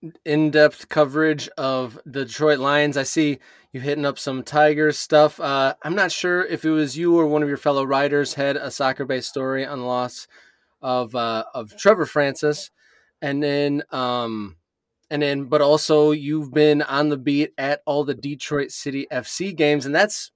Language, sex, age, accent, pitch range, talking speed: English, male, 20-39, American, 140-170 Hz, 180 wpm